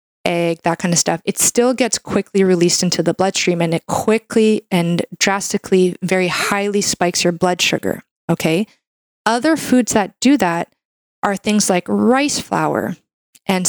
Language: English